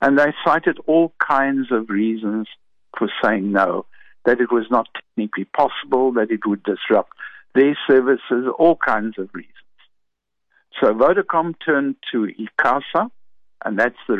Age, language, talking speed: 60-79, English, 145 wpm